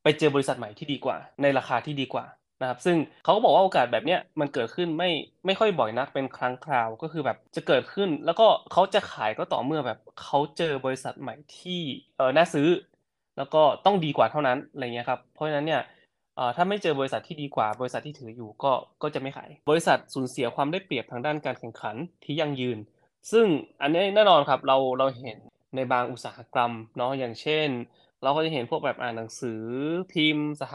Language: Thai